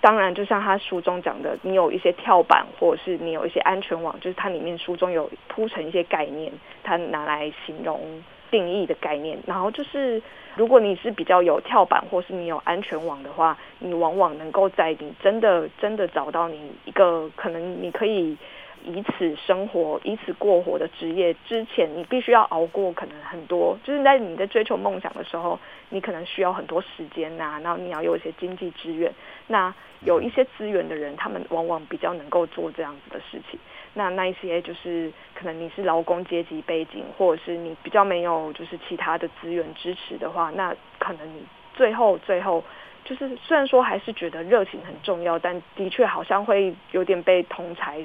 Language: Chinese